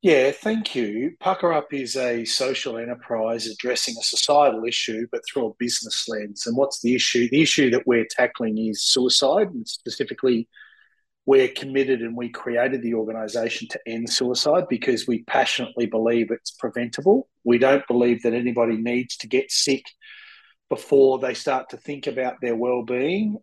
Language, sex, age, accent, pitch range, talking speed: English, male, 40-59, Australian, 120-155 Hz, 165 wpm